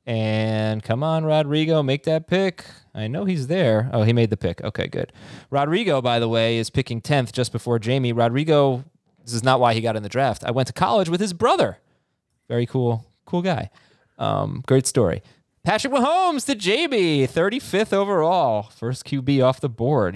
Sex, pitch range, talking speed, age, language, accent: male, 120-150 Hz, 190 wpm, 20-39, English, American